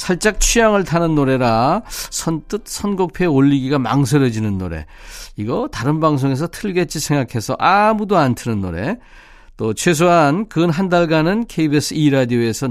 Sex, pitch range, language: male, 115-165 Hz, Korean